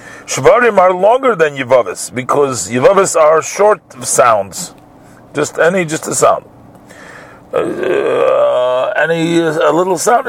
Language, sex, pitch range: English, male, 125-165 Hz